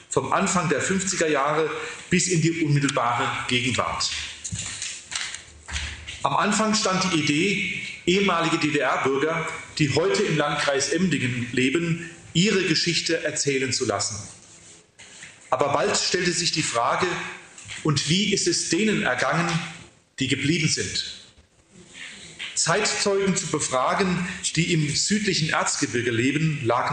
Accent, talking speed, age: German, 115 wpm, 40-59